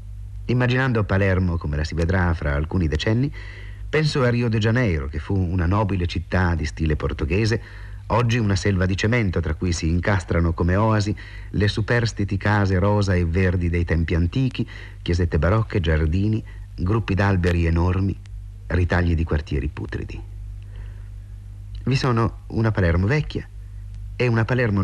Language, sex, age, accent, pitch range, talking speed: Italian, male, 50-69, native, 90-105 Hz, 145 wpm